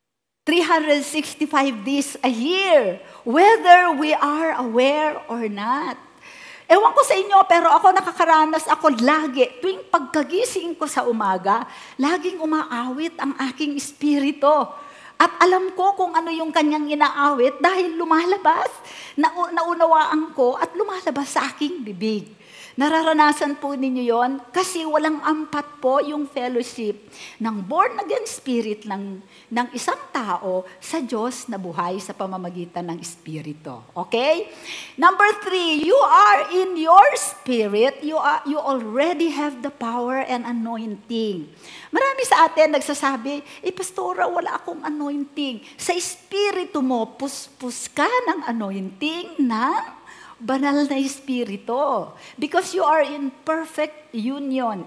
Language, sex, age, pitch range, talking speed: English, female, 50-69, 230-320 Hz, 125 wpm